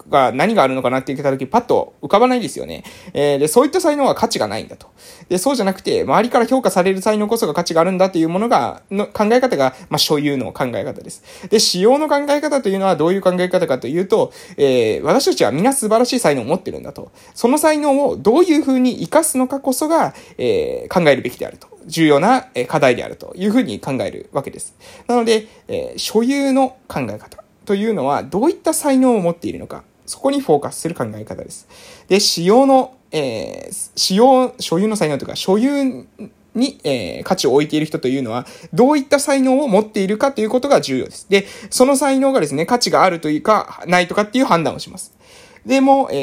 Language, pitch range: Japanese, 175-270 Hz